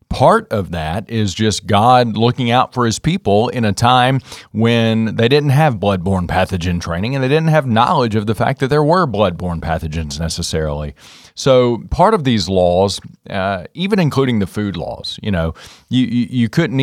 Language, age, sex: English, 40-59, male